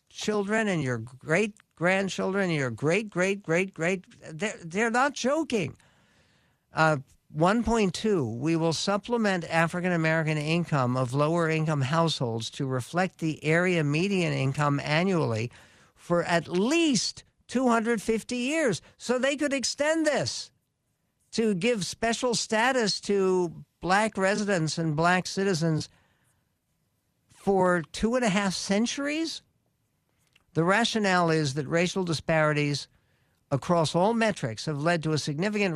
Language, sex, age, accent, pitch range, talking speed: English, male, 60-79, American, 150-195 Hz, 115 wpm